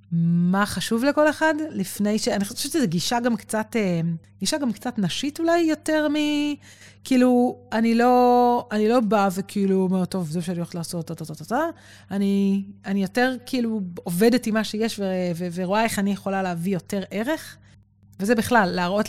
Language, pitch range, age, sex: Hebrew, 180-230 Hz, 30-49, female